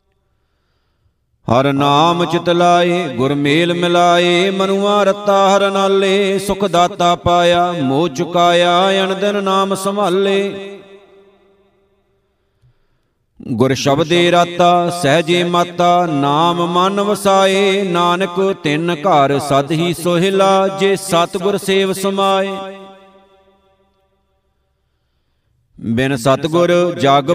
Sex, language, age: male, Punjabi, 50-69